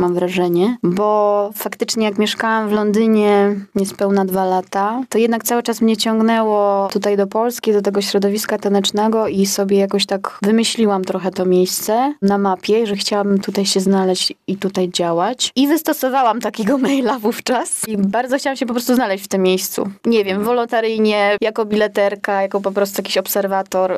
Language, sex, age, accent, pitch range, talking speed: Polish, female, 20-39, native, 195-230 Hz, 170 wpm